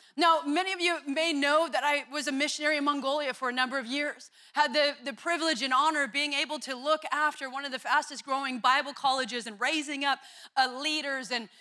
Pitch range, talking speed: 250-290 Hz, 220 wpm